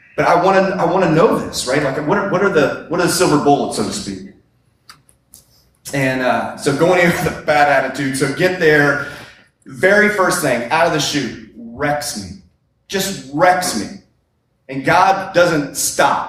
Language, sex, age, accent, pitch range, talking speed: English, male, 30-49, American, 135-165 Hz, 190 wpm